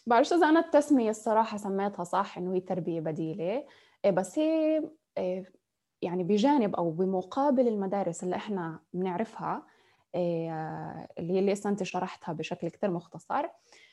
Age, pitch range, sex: 20-39, 185-260 Hz, female